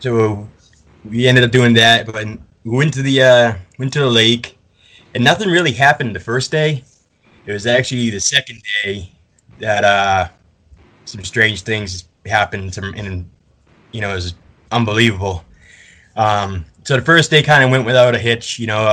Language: English